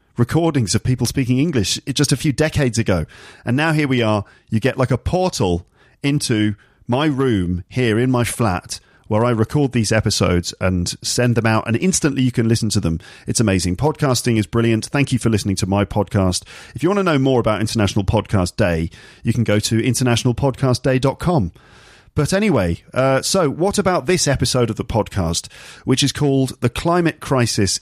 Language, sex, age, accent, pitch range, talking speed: English, male, 40-59, British, 105-140 Hz, 190 wpm